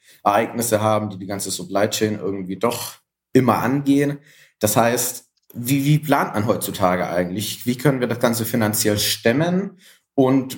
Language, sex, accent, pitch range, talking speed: German, male, German, 105-130 Hz, 155 wpm